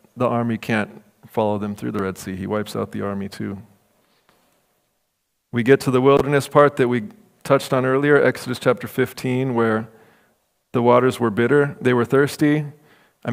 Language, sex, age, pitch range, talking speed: English, male, 40-59, 115-140 Hz, 170 wpm